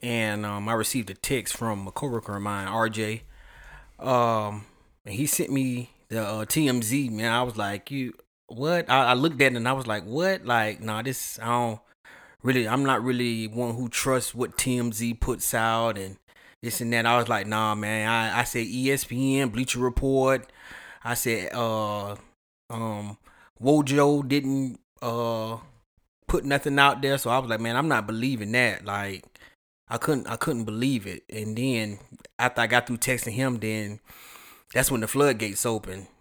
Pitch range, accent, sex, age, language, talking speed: 110-130 Hz, American, male, 30-49, English, 180 wpm